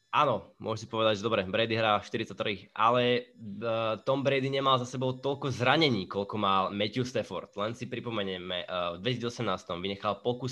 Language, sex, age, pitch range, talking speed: Slovak, male, 20-39, 100-120 Hz, 160 wpm